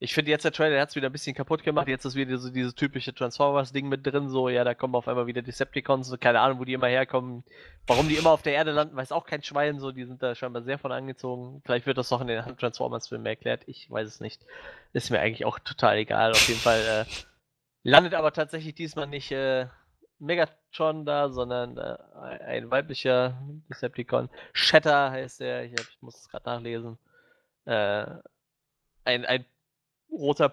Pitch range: 120-145 Hz